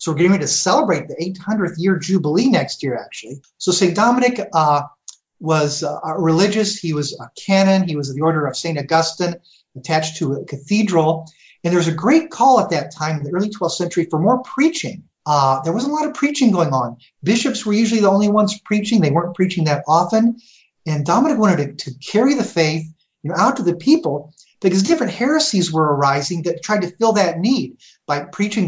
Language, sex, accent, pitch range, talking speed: English, male, American, 155-210 Hz, 215 wpm